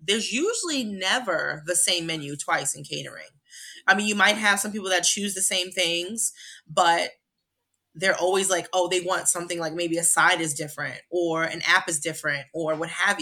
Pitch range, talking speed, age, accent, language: 170-190 Hz, 195 wpm, 20-39, American, English